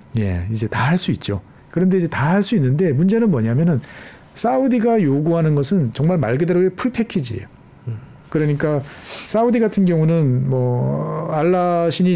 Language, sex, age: Korean, male, 40-59